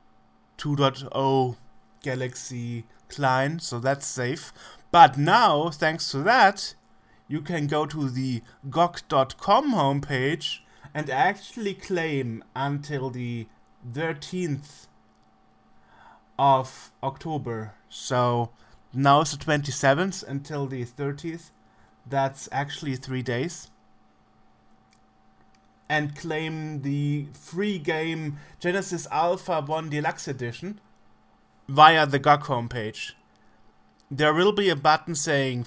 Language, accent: English, German